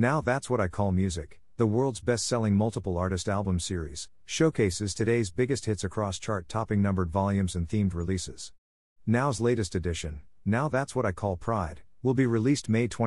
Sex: male